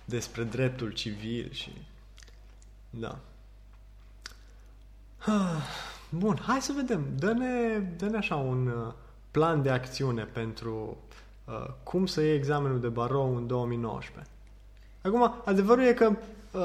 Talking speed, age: 95 wpm, 20-39